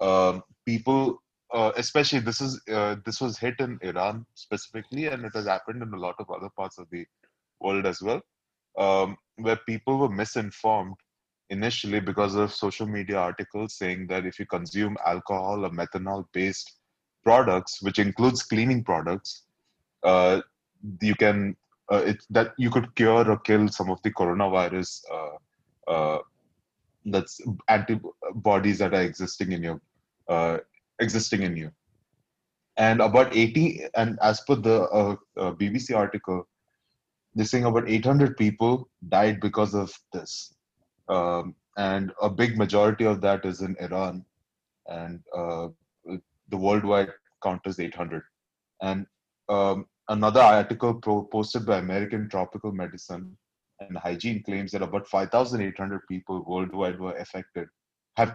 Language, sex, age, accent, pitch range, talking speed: Hindi, male, 20-39, native, 95-110 Hz, 150 wpm